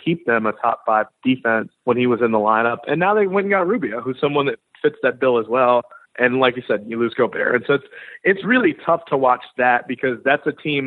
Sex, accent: male, American